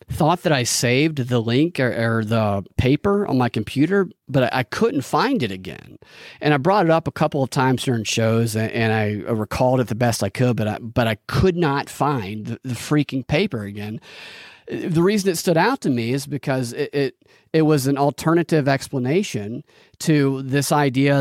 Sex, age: male, 40-59